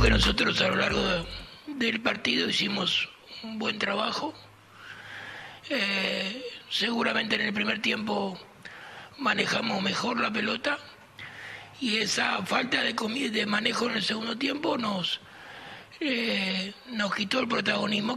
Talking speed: 120 wpm